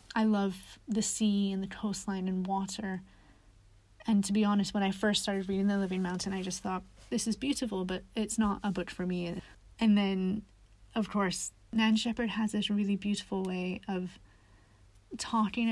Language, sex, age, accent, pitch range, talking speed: English, female, 30-49, American, 180-210 Hz, 180 wpm